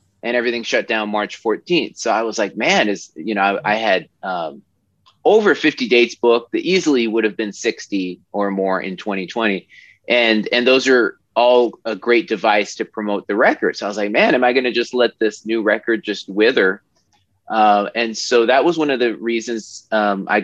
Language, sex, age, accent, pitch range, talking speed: English, male, 30-49, American, 105-130 Hz, 210 wpm